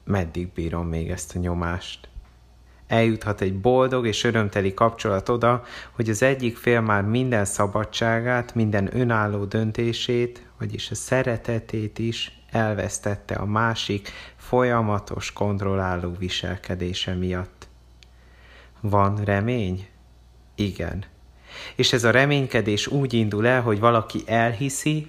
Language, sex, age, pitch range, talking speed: Hungarian, male, 30-49, 95-115 Hz, 110 wpm